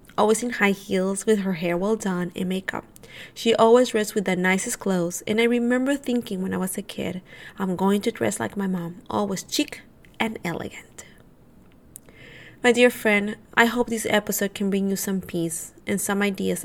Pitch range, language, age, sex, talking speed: 190-230 Hz, English, 20-39, female, 190 wpm